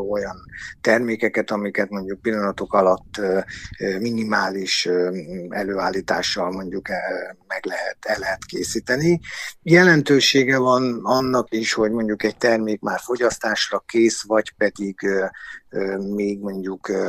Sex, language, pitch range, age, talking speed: male, Hungarian, 100-120 Hz, 50-69, 100 wpm